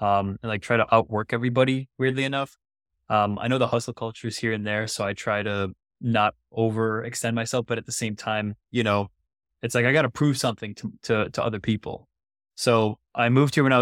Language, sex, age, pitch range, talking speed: English, male, 20-39, 110-125 Hz, 220 wpm